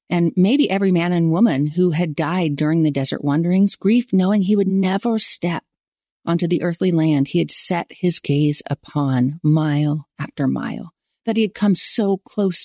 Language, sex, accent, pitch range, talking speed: English, female, American, 150-195 Hz, 180 wpm